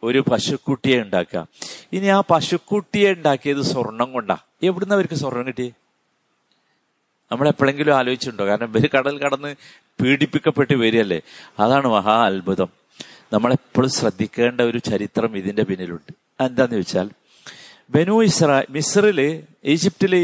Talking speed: 105 wpm